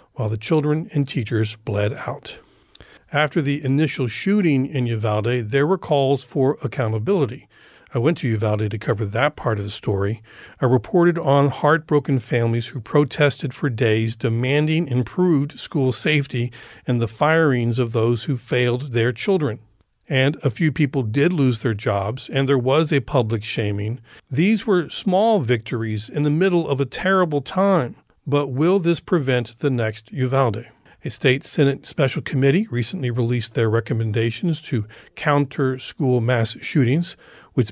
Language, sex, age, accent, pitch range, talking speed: English, male, 40-59, American, 115-145 Hz, 155 wpm